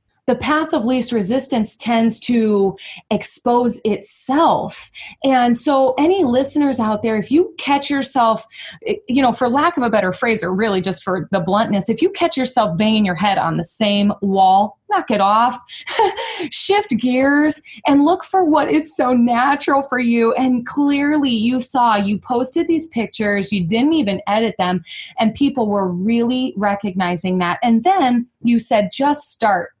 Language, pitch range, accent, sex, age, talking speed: English, 195-260 Hz, American, female, 20-39, 165 wpm